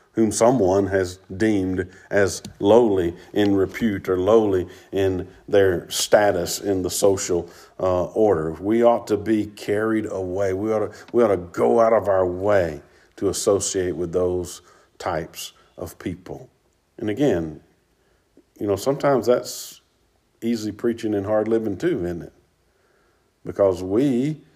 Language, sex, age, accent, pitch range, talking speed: English, male, 50-69, American, 95-110 Hz, 135 wpm